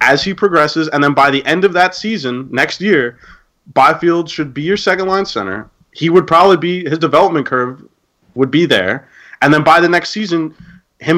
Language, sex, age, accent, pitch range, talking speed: English, male, 30-49, American, 120-160 Hz, 195 wpm